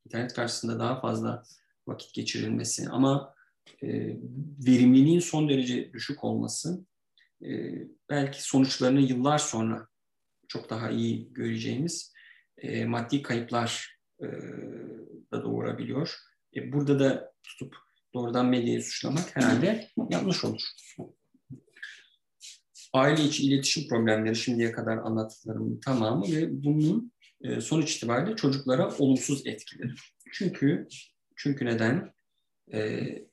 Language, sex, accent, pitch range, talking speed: Turkish, male, native, 115-145 Hz, 105 wpm